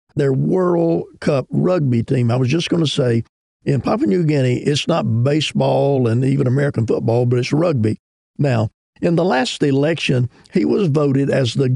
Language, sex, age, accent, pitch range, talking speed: English, male, 50-69, American, 125-155 Hz, 180 wpm